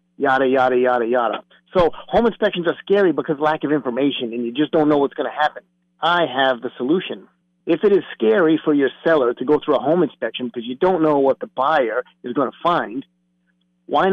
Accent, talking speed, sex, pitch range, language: American, 215 wpm, male, 135-175 Hz, English